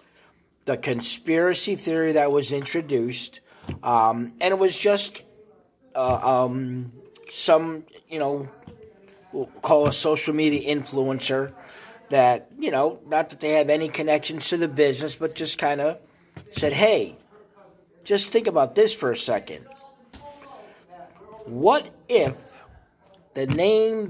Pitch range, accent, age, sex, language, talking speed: 140-185 Hz, American, 50-69, male, English, 125 wpm